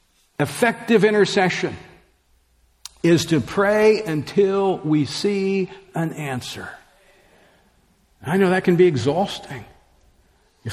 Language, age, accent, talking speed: English, 50-69, American, 95 wpm